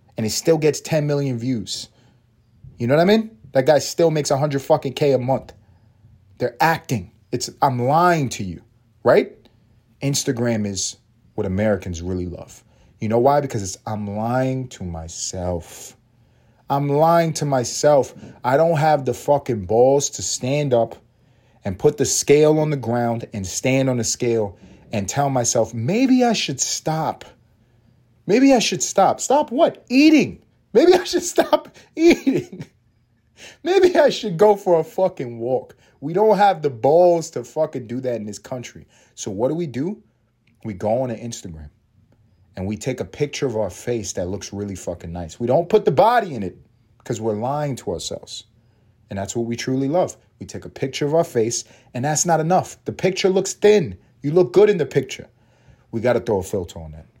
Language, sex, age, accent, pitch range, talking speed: English, male, 30-49, American, 115-155 Hz, 185 wpm